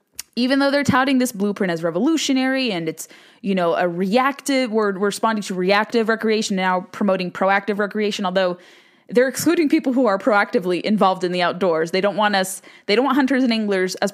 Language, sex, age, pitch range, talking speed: English, female, 20-39, 190-245 Hz, 200 wpm